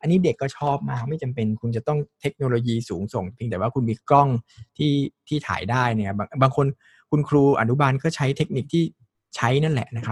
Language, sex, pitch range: Thai, male, 110-145 Hz